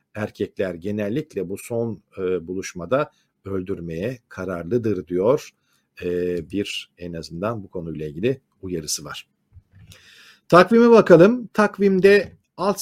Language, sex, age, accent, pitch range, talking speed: Turkish, male, 50-69, native, 110-150 Hz, 95 wpm